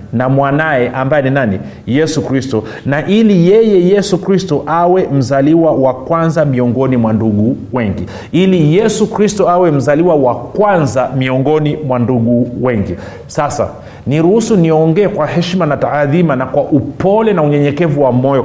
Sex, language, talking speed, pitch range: male, Swahili, 145 wpm, 125-170 Hz